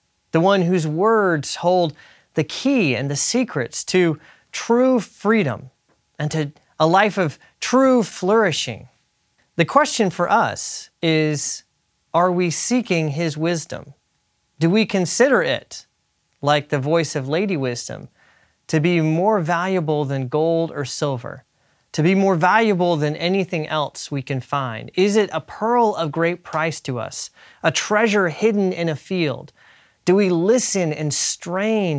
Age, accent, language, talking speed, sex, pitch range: 30-49, American, English, 145 wpm, male, 150-195 Hz